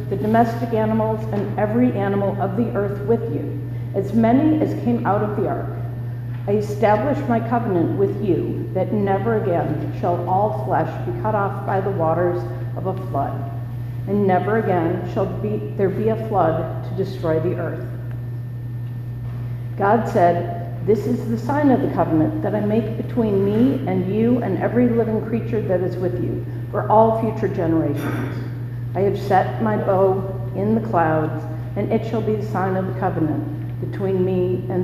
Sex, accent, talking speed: female, American, 175 wpm